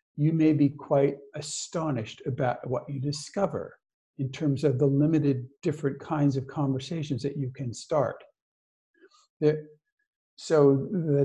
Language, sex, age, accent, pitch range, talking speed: English, male, 50-69, American, 135-165 Hz, 135 wpm